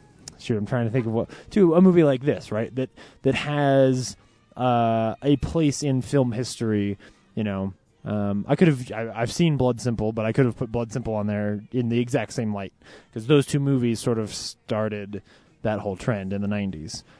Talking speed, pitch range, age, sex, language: 210 wpm, 105-130 Hz, 20-39, male, English